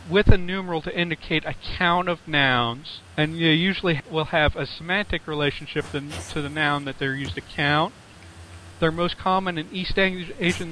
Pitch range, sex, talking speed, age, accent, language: 120-170 Hz, male, 175 wpm, 40-59, American, English